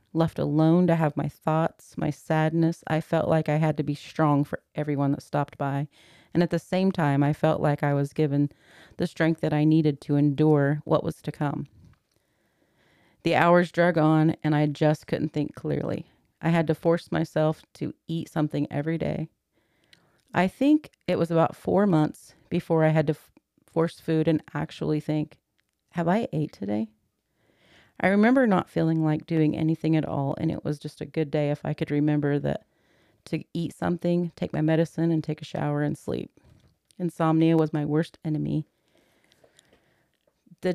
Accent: American